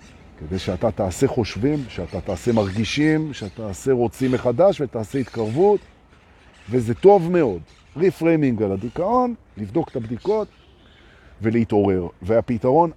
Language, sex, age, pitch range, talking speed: Hebrew, male, 50-69, 105-155 Hz, 105 wpm